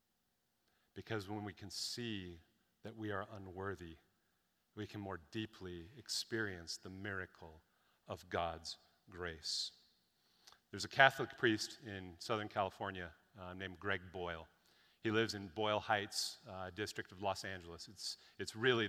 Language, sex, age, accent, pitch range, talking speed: English, male, 40-59, American, 95-110 Hz, 135 wpm